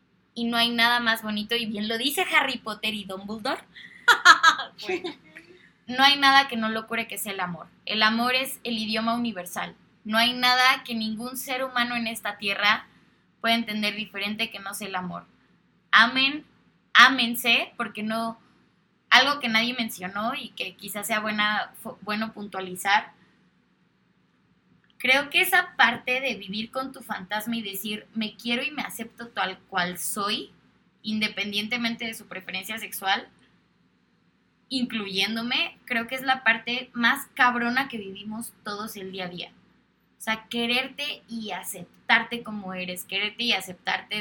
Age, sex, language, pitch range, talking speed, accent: 20-39, female, Spanish, 210-250 Hz, 155 wpm, Mexican